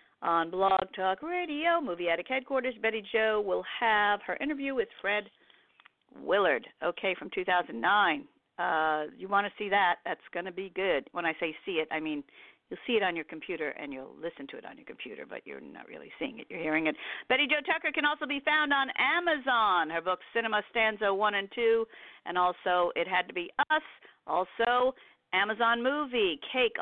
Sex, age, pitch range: female, 50-69, 175-275 Hz